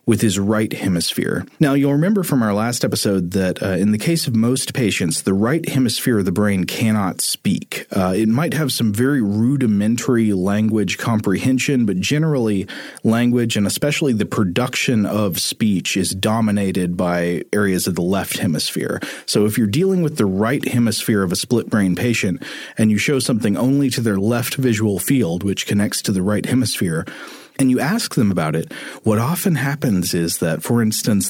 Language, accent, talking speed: English, American, 180 wpm